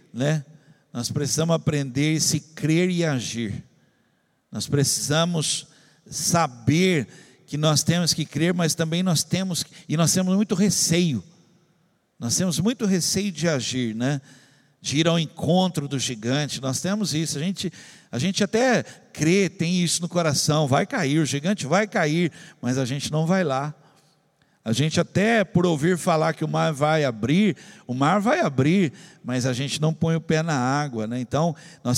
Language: Portuguese